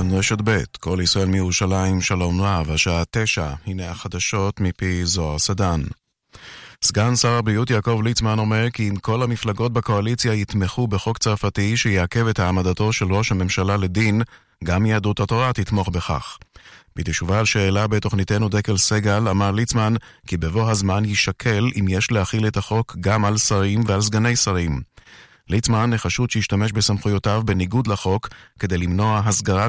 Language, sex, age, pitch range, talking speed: Hebrew, male, 30-49, 95-115 Hz, 145 wpm